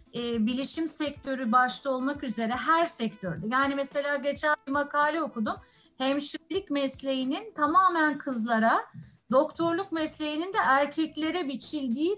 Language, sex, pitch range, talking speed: Turkish, female, 255-315 Hz, 115 wpm